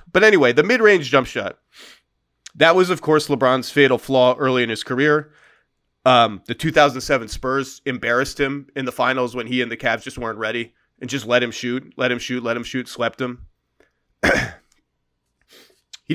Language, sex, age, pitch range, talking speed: English, male, 30-49, 125-160 Hz, 180 wpm